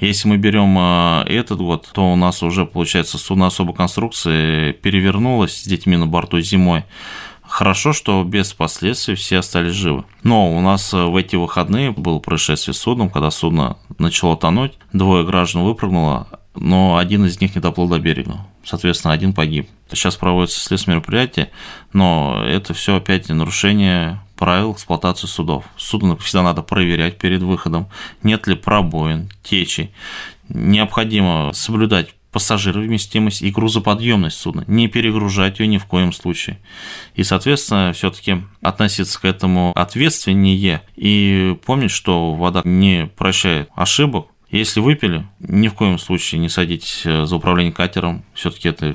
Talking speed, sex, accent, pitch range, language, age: 140 wpm, male, native, 85-100 Hz, Russian, 20-39